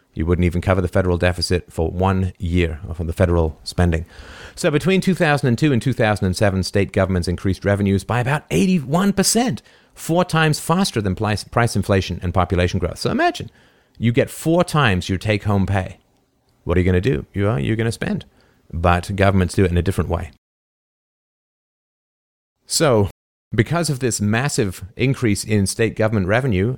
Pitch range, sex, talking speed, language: 95-120 Hz, male, 165 wpm, English